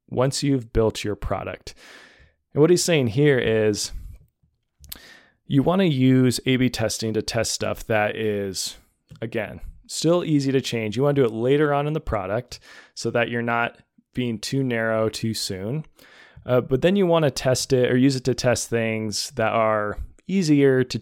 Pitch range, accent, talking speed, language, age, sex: 105-130 Hz, American, 185 wpm, English, 20-39, male